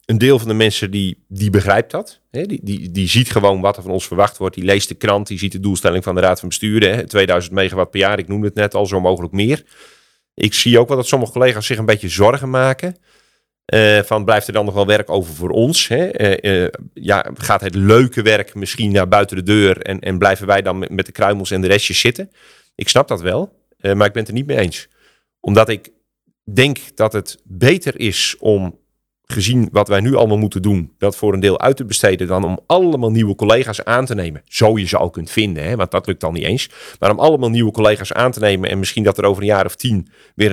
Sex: male